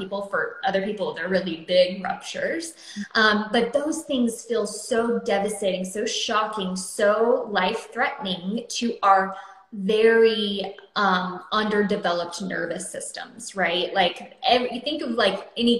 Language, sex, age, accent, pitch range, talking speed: English, female, 20-39, American, 190-225 Hz, 125 wpm